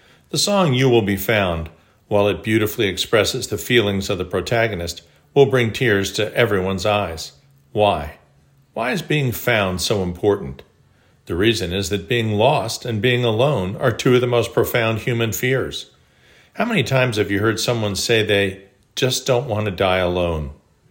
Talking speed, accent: 170 wpm, American